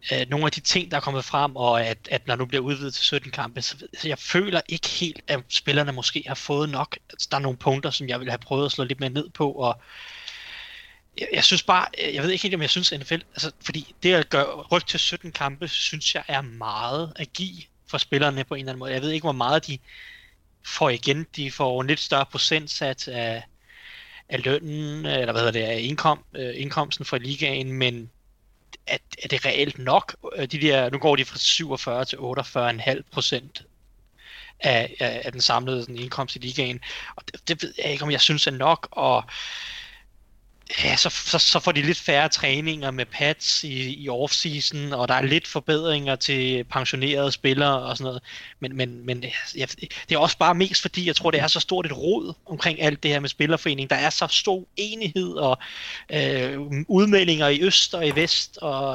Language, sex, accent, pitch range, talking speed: Danish, male, native, 135-165 Hz, 215 wpm